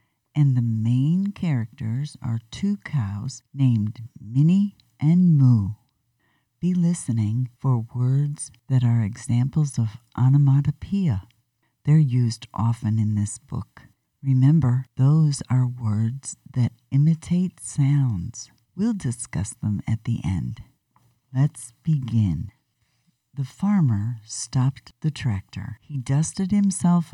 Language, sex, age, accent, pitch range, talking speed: English, female, 50-69, American, 115-145 Hz, 110 wpm